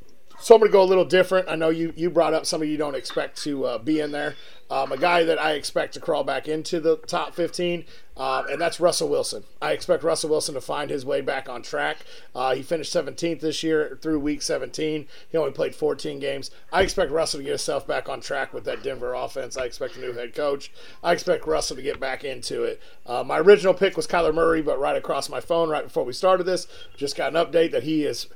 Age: 40-59